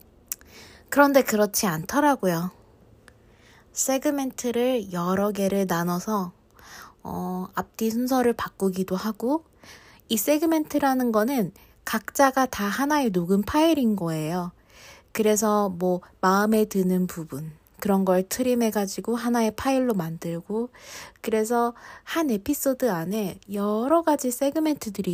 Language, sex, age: Korean, female, 20-39